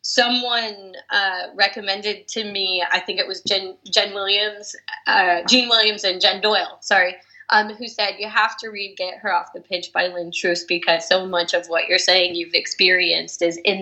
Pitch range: 175-225 Hz